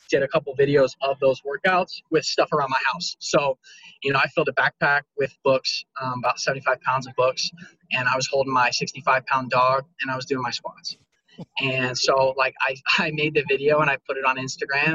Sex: male